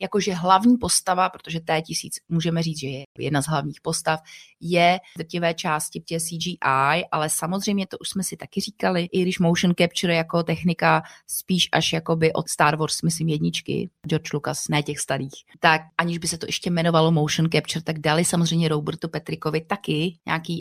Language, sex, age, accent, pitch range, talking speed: Czech, female, 30-49, native, 160-195 Hz, 185 wpm